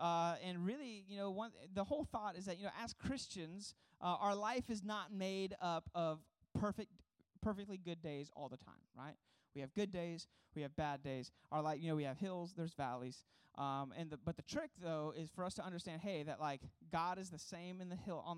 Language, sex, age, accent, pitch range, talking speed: English, male, 30-49, American, 155-195 Hz, 230 wpm